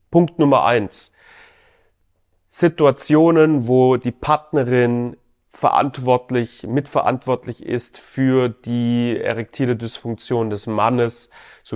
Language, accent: German, German